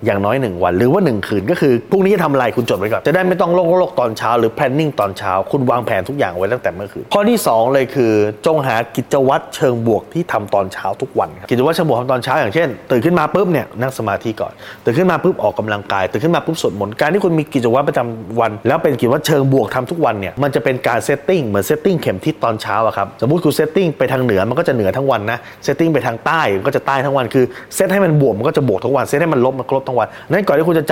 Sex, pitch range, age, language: male, 115-165 Hz, 20-39, Thai